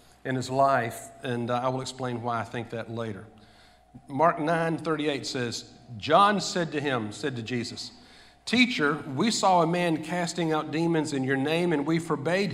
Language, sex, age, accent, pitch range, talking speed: English, male, 50-69, American, 120-160 Hz, 175 wpm